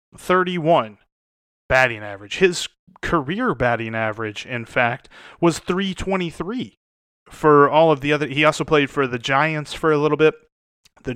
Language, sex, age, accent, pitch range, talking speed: English, male, 30-49, American, 125-170 Hz, 150 wpm